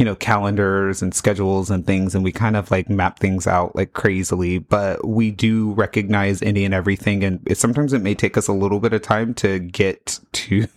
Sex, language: male, English